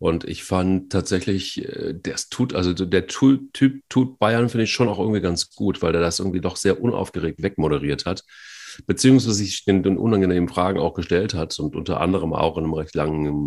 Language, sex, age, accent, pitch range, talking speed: German, male, 40-59, German, 85-105 Hz, 200 wpm